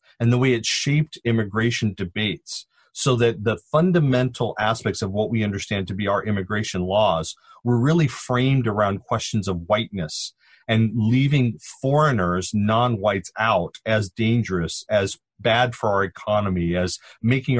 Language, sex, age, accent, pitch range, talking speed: English, male, 40-59, American, 100-125 Hz, 145 wpm